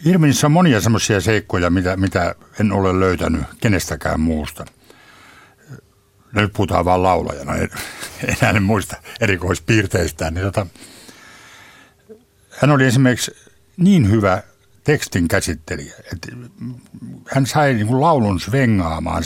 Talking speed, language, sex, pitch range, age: 105 wpm, Finnish, male, 85-115 Hz, 60-79